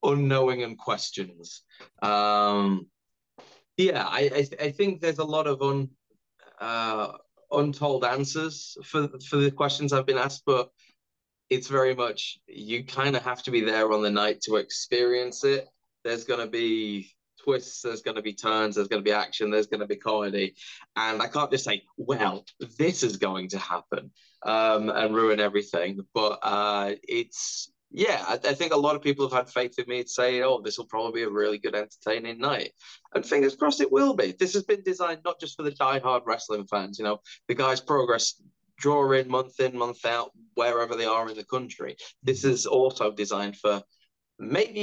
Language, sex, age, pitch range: English, male, 20-39, 105-145 Hz